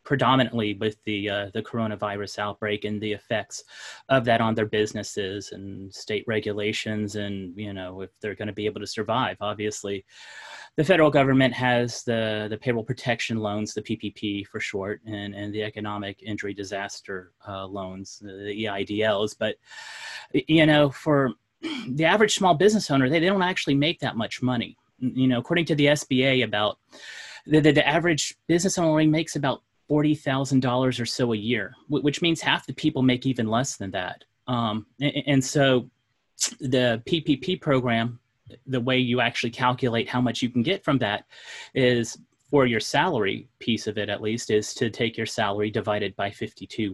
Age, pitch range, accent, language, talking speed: 30-49, 105-135 Hz, American, English, 175 wpm